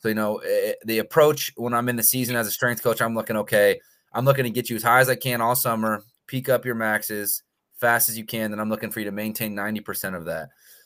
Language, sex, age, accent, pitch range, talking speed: English, male, 20-39, American, 105-120 Hz, 260 wpm